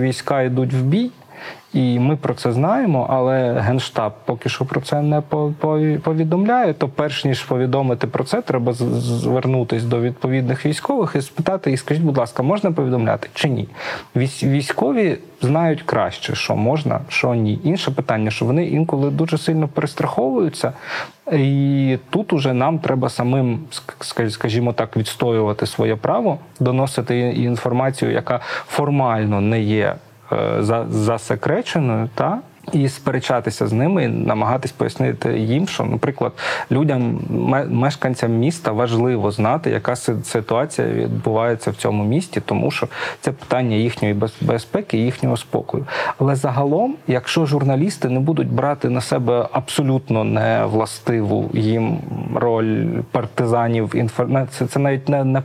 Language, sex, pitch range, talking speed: Ukrainian, male, 115-145 Hz, 130 wpm